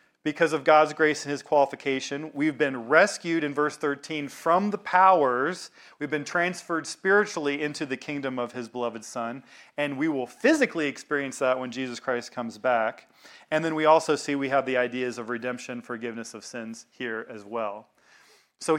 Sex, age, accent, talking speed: male, 40-59, American, 180 wpm